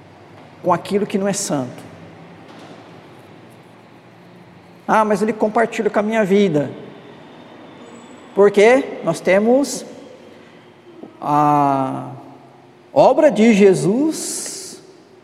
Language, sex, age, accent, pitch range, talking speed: Portuguese, male, 50-69, Brazilian, 170-235 Hz, 85 wpm